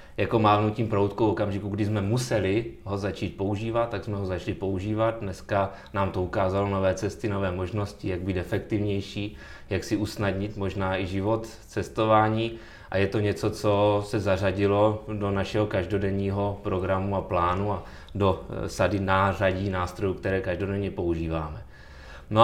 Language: Czech